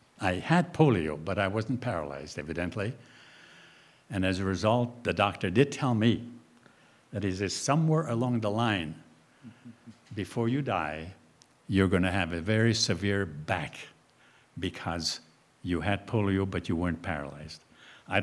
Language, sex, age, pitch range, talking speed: English, male, 70-89, 95-140 Hz, 140 wpm